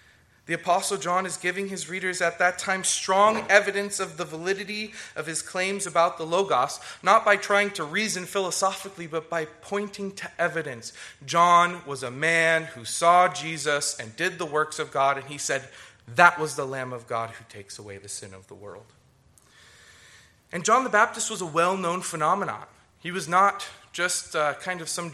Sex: male